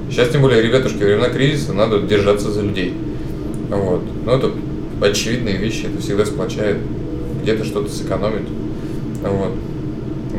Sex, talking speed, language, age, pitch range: male, 135 wpm, Russian, 20-39, 100-135 Hz